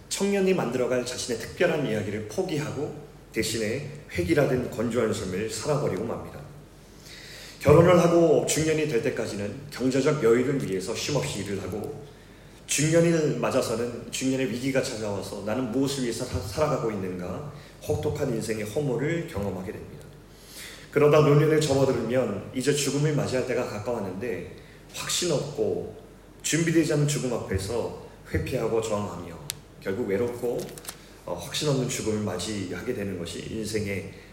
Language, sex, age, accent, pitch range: Korean, male, 30-49, native, 110-150 Hz